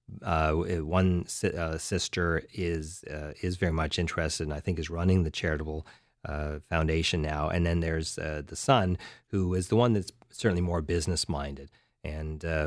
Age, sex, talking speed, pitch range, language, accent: 30-49, male, 170 wpm, 80-90 Hz, English, American